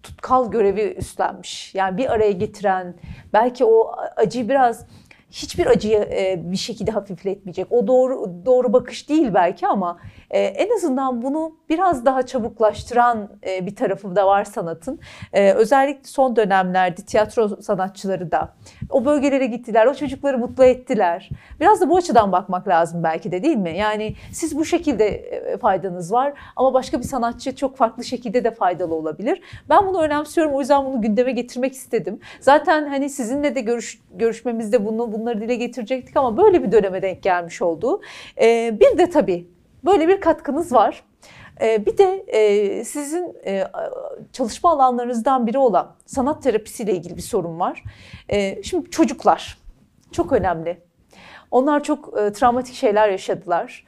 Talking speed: 145 wpm